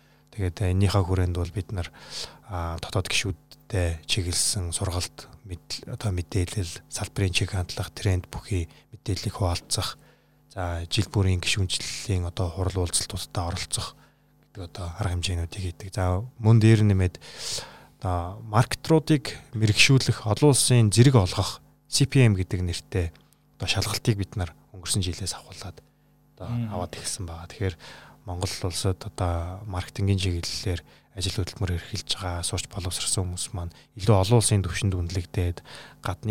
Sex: male